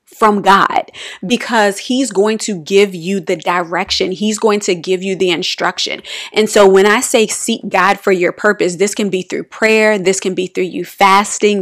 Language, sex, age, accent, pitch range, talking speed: English, female, 30-49, American, 185-210 Hz, 195 wpm